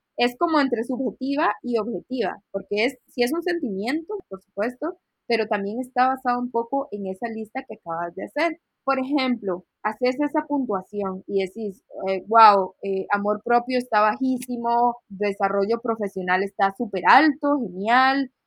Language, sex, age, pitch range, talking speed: Spanish, female, 20-39, 205-270 Hz, 155 wpm